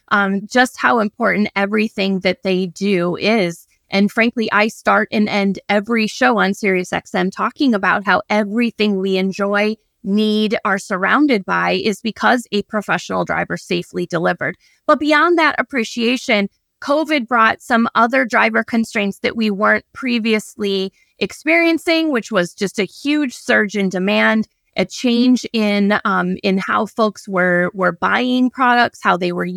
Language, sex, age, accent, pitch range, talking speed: English, female, 20-39, American, 195-240 Hz, 150 wpm